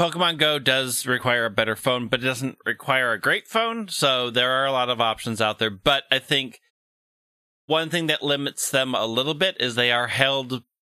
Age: 30-49